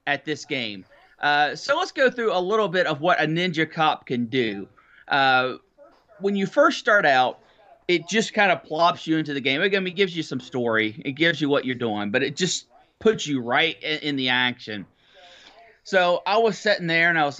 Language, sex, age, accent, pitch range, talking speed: English, male, 30-49, American, 135-185 Hz, 210 wpm